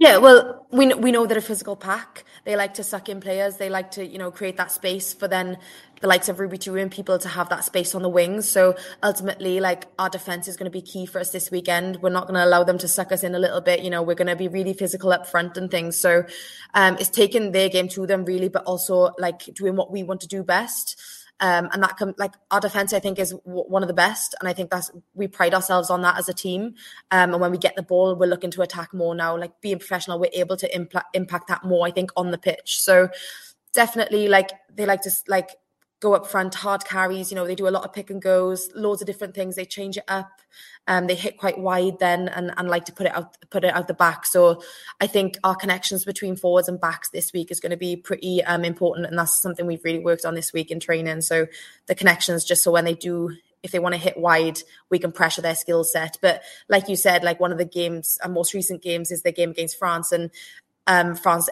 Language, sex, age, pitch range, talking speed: English, female, 20-39, 175-195 Hz, 265 wpm